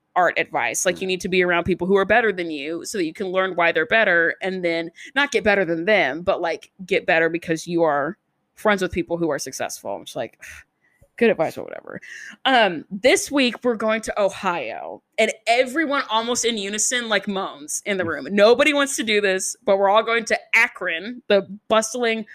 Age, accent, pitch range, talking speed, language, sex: 20-39, American, 180-240 Hz, 210 wpm, English, female